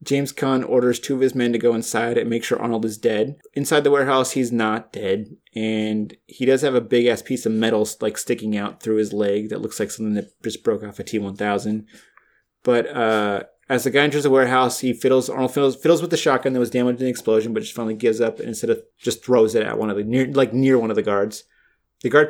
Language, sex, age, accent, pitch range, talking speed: English, male, 30-49, American, 115-140 Hz, 255 wpm